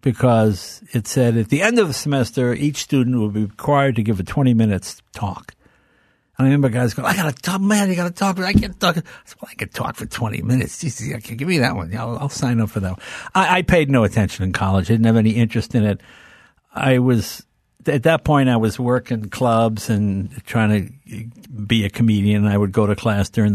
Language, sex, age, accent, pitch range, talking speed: English, male, 60-79, American, 105-140 Hz, 235 wpm